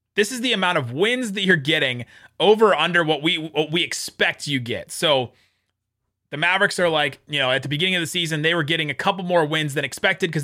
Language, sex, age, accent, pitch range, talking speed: English, male, 30-49, American, 140-205 Hz, 235 wpm